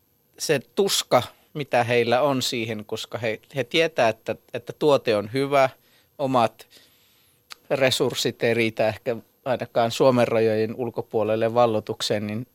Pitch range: 110-125 Hz